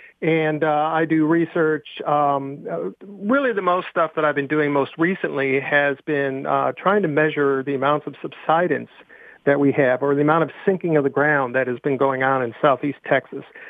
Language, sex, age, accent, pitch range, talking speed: English, male, 40-59, American, 135-155 Hz, 195 wpm